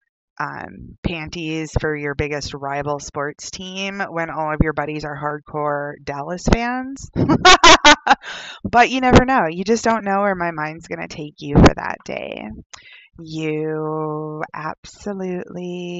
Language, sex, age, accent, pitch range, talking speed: English, female, 20-39, American, 155-195 Hz, 140 wpm